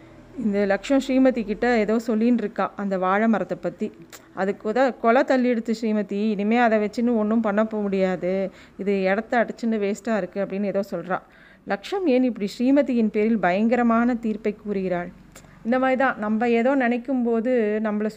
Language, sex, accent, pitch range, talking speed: Tamil, female, native, 195-240 Hz, 150 wpm